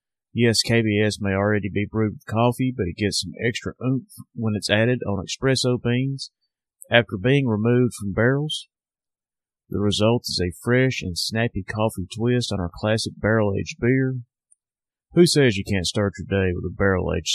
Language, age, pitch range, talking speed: English, 30-49, 100-120 Hz, 170 wpm